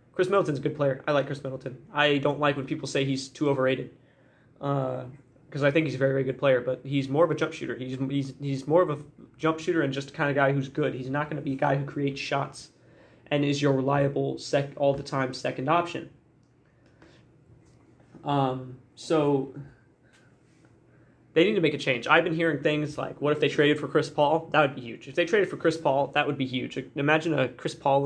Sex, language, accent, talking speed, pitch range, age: male, English, American, 225 wpm, 130-150 Hz, 20-39